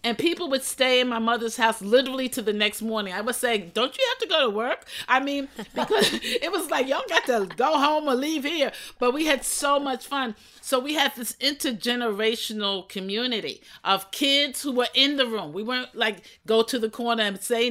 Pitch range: 210-250 Hz